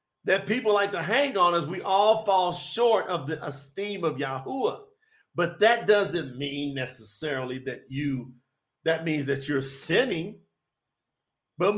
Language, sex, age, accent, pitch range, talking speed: English, male, 50-69, American, 160-255 Hz, 150 wpm